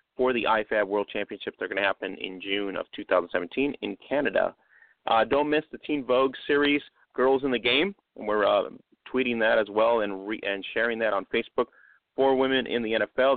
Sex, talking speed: male, 205 wpm